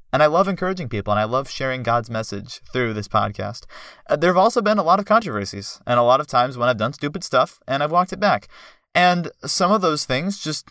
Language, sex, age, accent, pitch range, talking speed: English, male, 30-49, American, 115-170 Hz, 240 wpm